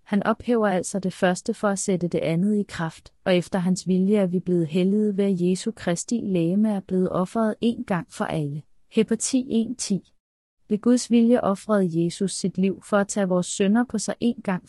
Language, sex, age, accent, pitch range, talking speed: Danish, female, 30-49, native, 180-220 Hz, 210 wpm